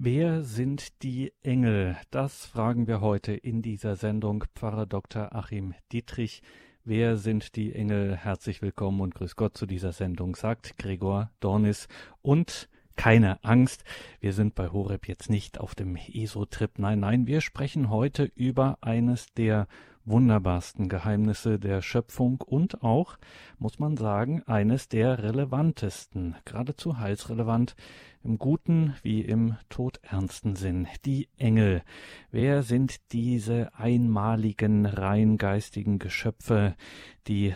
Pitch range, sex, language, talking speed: 105-120 Hz, male, German, 125 wpm